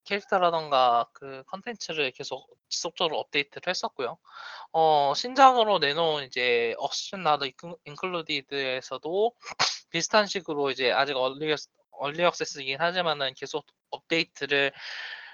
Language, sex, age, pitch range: Korean, male, 20-39, 140-230 Hz